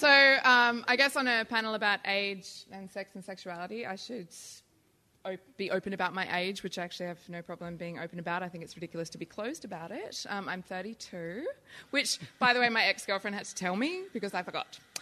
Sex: female